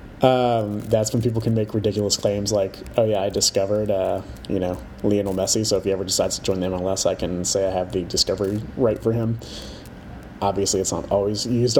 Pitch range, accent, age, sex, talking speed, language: 95-115 Hz, American, 30-49, male, 210 wpm, English